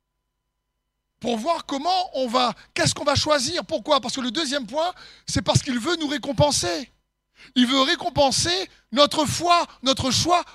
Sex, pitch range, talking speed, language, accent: male, 230-345 Hz, 160 wpm, French, French